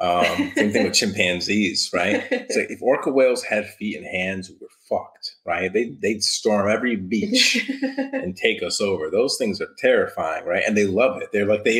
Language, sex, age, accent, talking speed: English, male, 30-49, American, 205 wpm